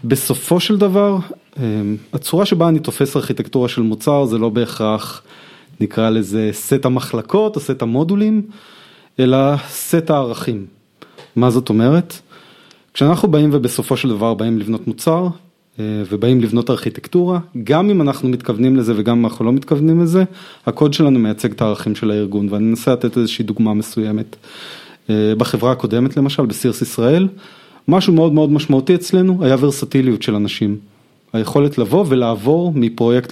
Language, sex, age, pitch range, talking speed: Hebrew, male, 30-49, 115-150 Hz, 140 wpm